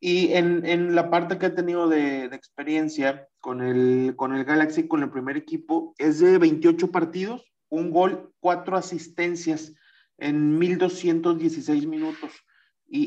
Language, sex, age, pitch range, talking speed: Spanish, male, 30-49, 150-180 Hz, 145 wpm